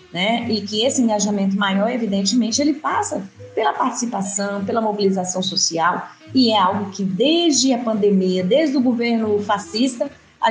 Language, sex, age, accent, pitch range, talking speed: Portuguese, female, 40-59, Brazilian, 195-235 Hz, 150 wpm